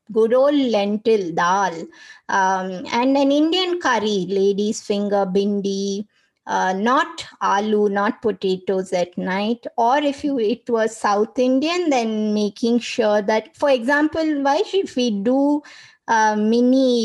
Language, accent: English, Indian